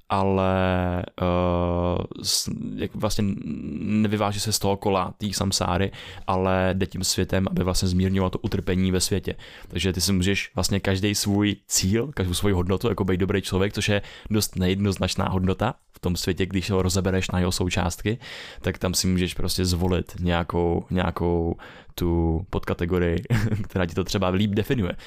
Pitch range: 90-105 Hz